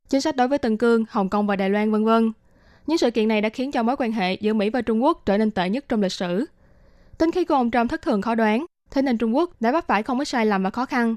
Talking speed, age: 305 wpm, 20-39